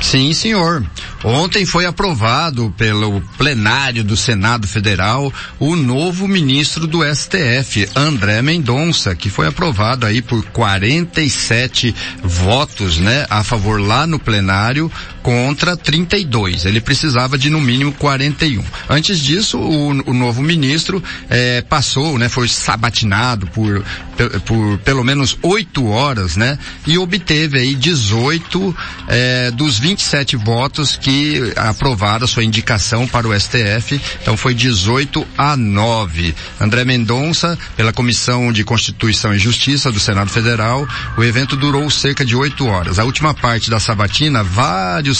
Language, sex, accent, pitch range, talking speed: Portuguese, male, Brazilian, 110-150 Hz, 135 wpm